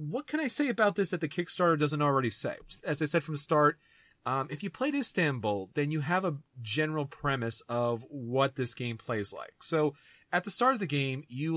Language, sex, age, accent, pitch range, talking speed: English, male, 30-49, American, 125-150 Hz, 225 wpm